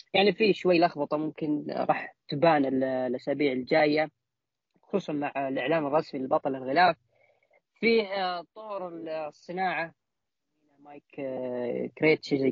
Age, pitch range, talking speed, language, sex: 20-39, 135-170 Hz, 100 wpm, Arabic, female